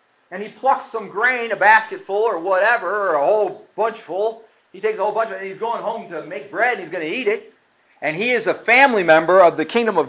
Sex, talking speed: male, 255 wpm